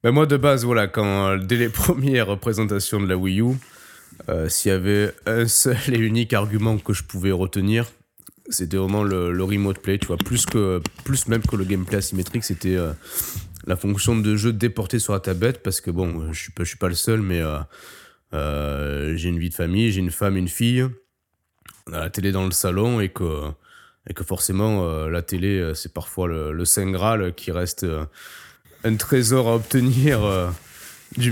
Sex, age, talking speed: male, 20-39, 205 wpm